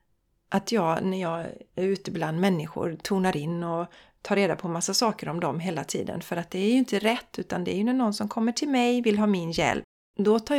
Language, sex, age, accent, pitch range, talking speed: Swedish, female, 40-59, native, 180-245 Hz, 245 wpm